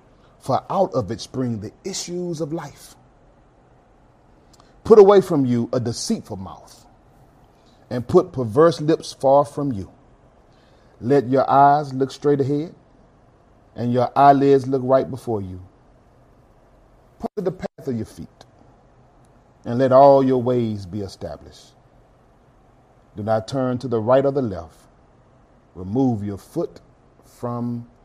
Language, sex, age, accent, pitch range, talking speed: English, male, 40-59, American, 120-140 Hz, 135 wpm